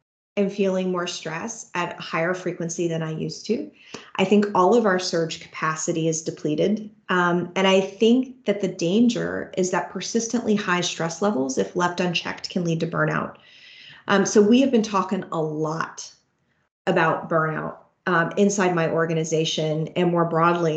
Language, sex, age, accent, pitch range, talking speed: English, female, 30-49, American, 170-215 Hz, 170 wpm